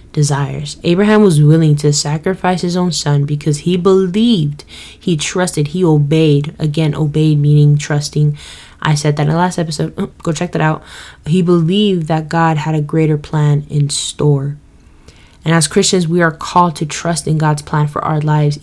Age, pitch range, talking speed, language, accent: 10-29, 150-170 Hz, 175 wpm, English, American